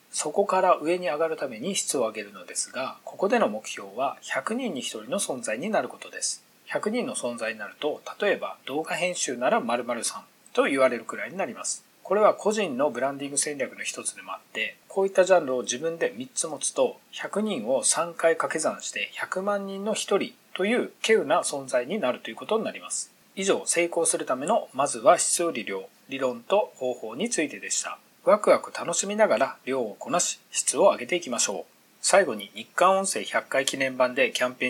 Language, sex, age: Japanese, male, 40-59